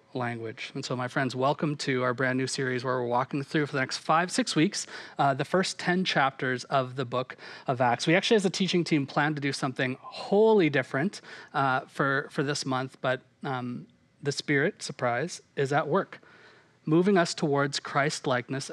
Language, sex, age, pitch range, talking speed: English, male, 30-49, 135-170 Hz, 190 wpm